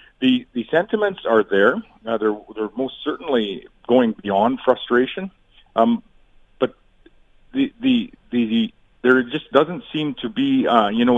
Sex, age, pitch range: male, 40-59, 105-130 Hz